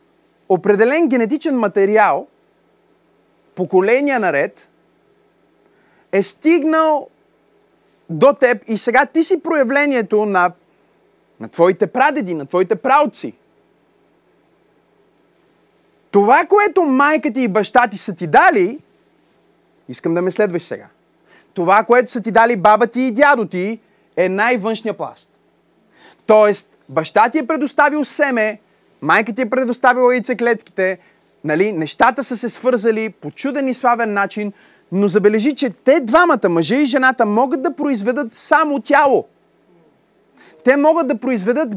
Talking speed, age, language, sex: 120 wpm, 30-49, Bulgarian, male